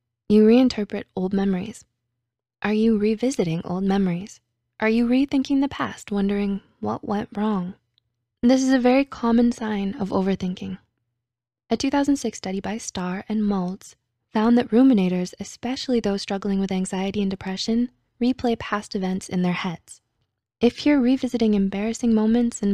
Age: 20-39